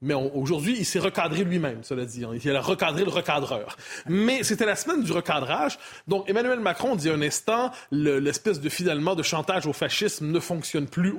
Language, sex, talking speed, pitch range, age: French, male, 215 wpm, 145-200 Hz, 30-49